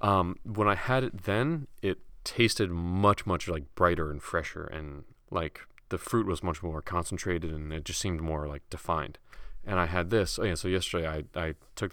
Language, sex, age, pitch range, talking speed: English, male, 30-49, 80-100 Hz, 200 wpm